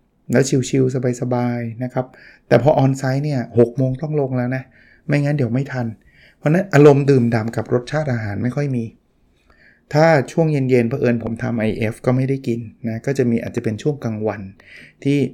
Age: 20-39